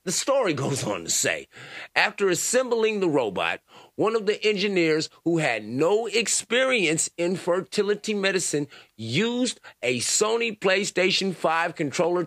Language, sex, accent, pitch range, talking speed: English, male, American, 130-190 Hz, 130 wpm